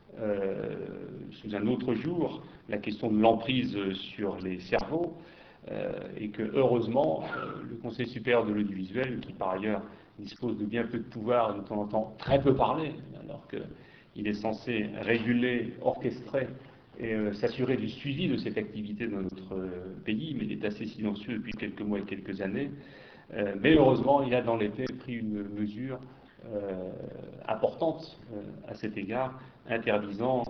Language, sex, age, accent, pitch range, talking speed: French, male, 40-59, French, 105-125 Hz, 170 wpm